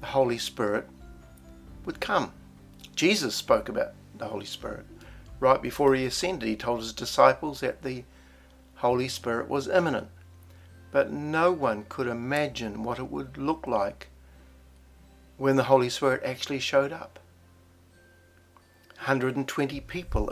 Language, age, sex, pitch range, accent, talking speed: English, 60-79, male, 90-130 Hz, Australian, 130 wpm